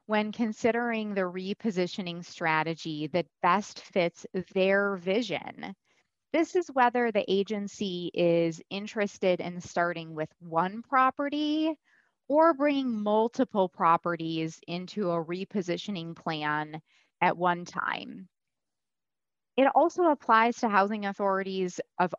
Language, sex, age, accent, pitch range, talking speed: English, female, 20-39, American, 170-215 Hz, 110 wpm